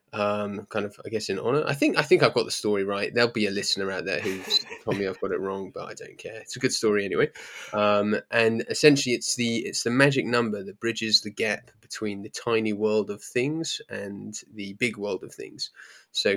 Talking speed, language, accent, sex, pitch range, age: 235 wpm, English, British, male, 105-120 Hz, 20-39